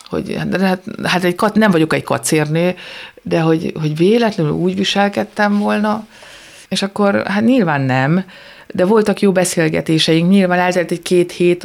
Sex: female